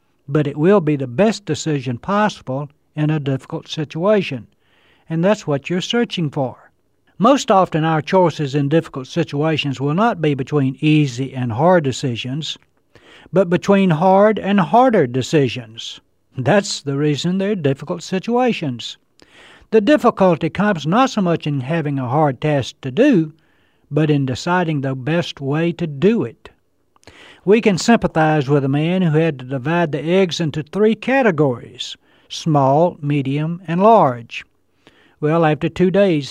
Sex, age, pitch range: male, 60-79, 135-180 Hz